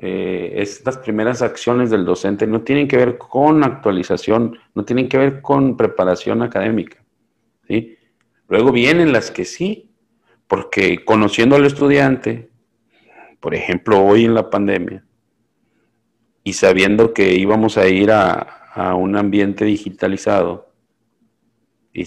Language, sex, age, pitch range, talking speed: Spanish, male, 50-69, 100-125 Hz, 130 wpm